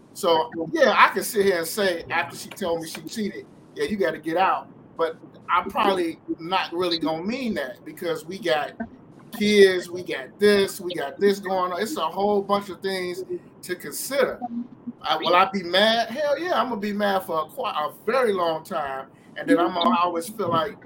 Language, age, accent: English, 30-49, American